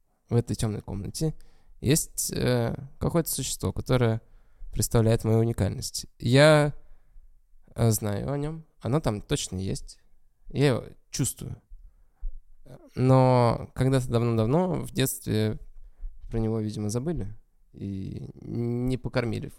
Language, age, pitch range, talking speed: Russian, 20-39, 105-130 Hz, 105 wpm